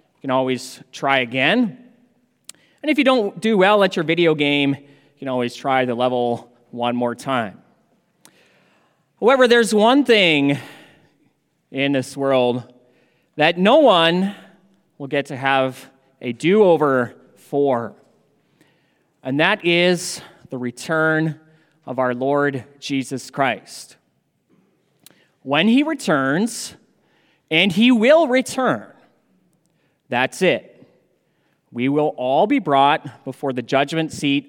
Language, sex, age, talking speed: English, male, 30-49, 120 wpm